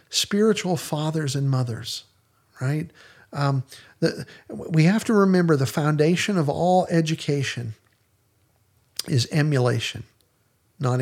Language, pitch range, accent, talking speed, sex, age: English, 120-150 Hz, American, 100 wpm, male, 50-69